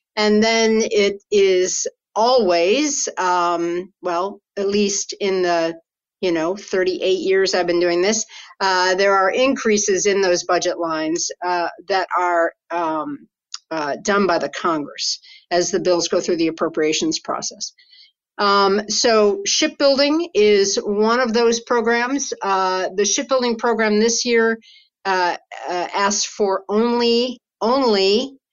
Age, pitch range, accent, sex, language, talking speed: 50-69, 185-245 Hz, American, female, English, 135 wpm